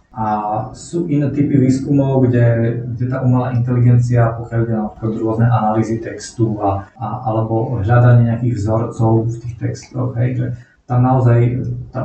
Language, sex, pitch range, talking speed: Slovak, male, 110-125 Hz, 135 wpm